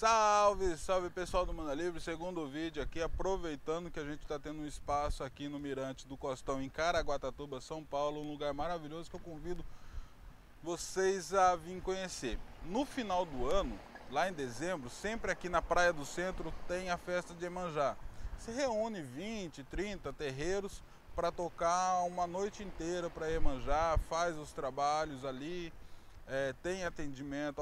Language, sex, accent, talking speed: Portuguese, male, Brazilian, 155 wpm